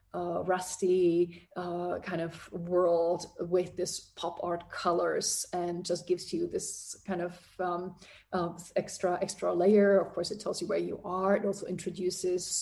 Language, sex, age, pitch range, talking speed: English, female, 30-49, 170-185 Hz, 160 wpm